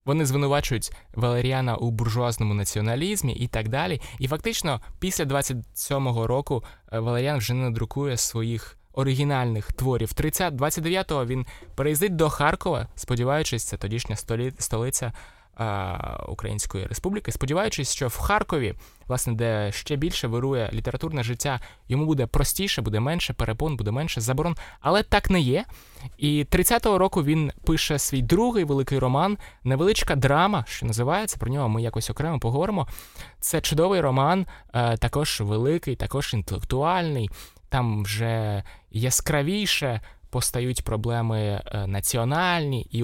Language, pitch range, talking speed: Ukrainian, 110-150 Hz, 125 wpm